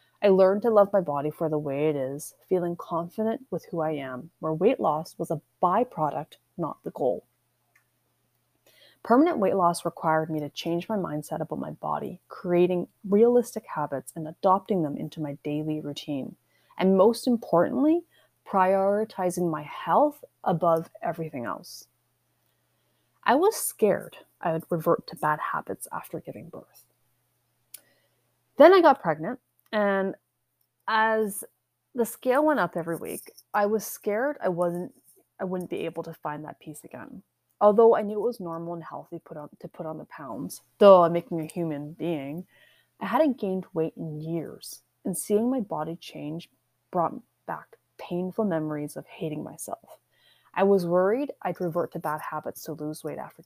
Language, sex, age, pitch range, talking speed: English, female, 30-49, 155-205 Hz, 165 wpm